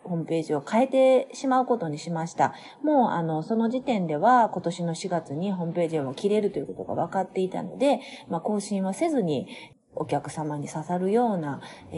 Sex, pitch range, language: female, 165-250 Hz, Japanese